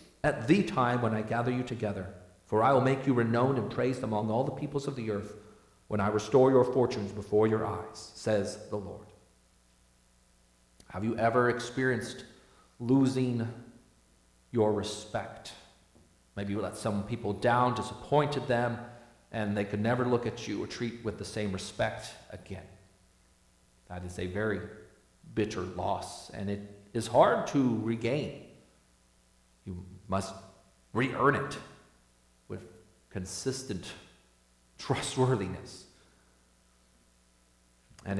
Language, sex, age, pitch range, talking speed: English, male, 40-59, 95-125 Hz, 130 wpm